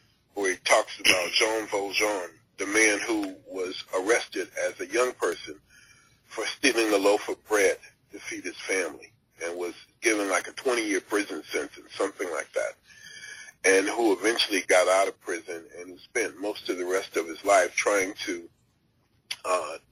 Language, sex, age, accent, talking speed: English, male, 40-59, American, 165 wpm